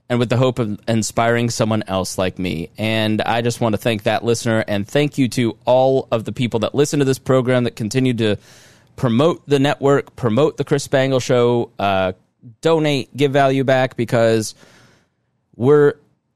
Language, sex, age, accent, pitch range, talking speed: English, male, 20-39, American, 110-135 Hz, 180 wpm